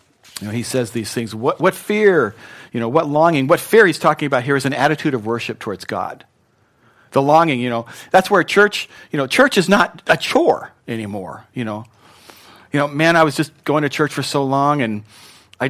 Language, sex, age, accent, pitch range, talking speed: English, male, 40-59, American, 120-165 Hz, 220 wpm